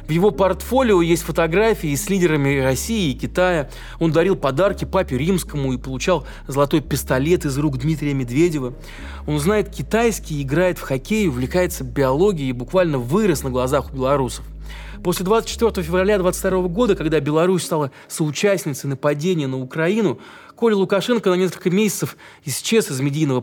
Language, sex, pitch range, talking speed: Russian, male, 130-180 Hz, 150 wpm